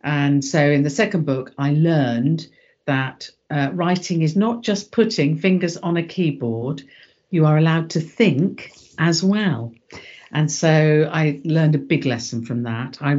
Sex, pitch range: female, 135-180 Hz